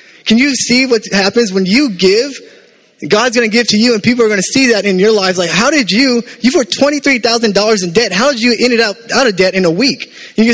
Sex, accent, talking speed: male, American, 260 wpm